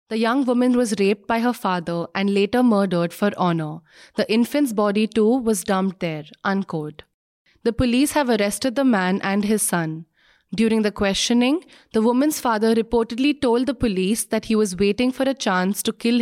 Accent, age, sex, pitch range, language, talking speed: Indian, 30-49, female, 195-250 Hz, English, 180 wpm